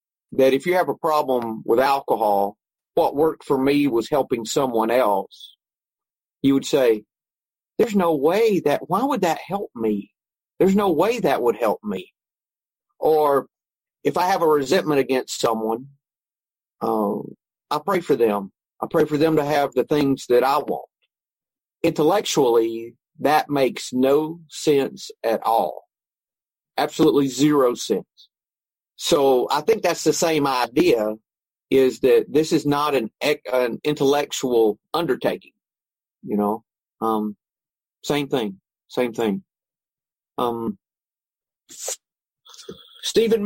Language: English